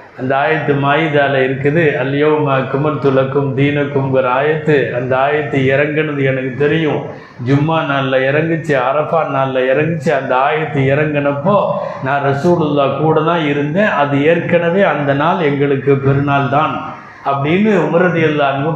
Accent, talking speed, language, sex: native, 110 wpm, Tamil, male